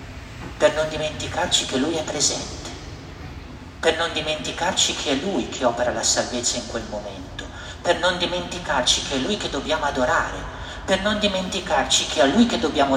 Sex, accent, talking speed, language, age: male, native, 170 wpm, Italian, 50-69